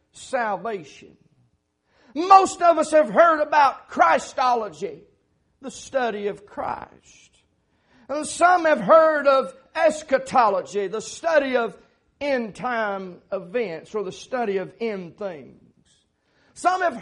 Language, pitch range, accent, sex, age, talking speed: English, 230-310 Hz, American, male, 40-59, 115 wpm